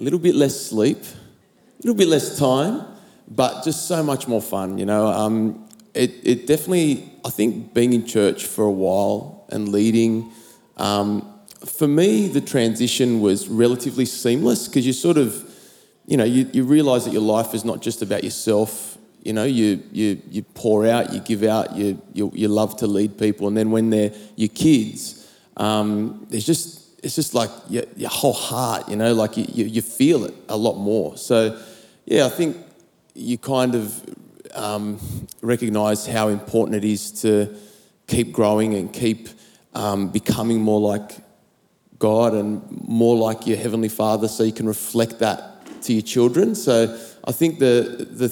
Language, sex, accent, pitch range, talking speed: English, male, Australian, 105-120 Hz, 175 wpm